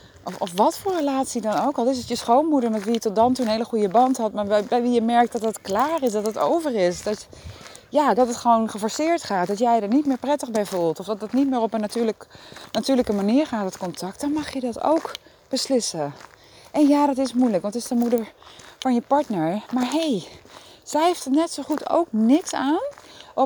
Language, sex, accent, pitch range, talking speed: Dutch, female, Dutch, 200-260 Hz, 250 wpm